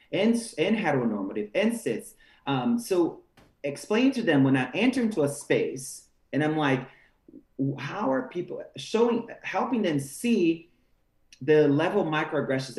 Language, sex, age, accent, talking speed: English, male, 30-49, American, 140 wpm